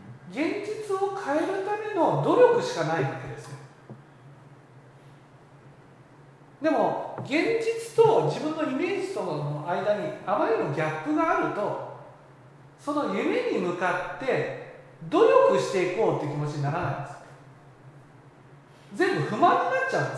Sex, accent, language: male, native, Japanese